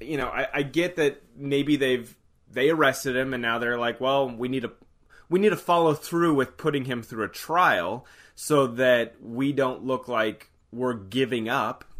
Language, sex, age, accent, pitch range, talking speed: English, male, 30-49, American, 110-140 Hz, 195 wpm